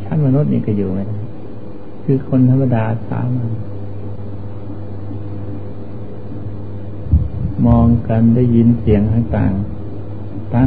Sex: male